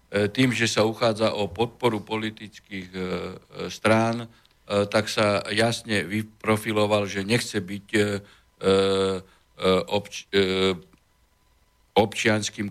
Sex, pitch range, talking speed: male, 100-120 Hz, 75 wpm